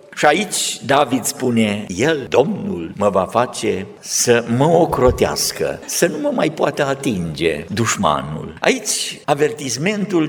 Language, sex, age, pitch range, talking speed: Romanian, male, 50-69, 120-185 Hz, 125 wpm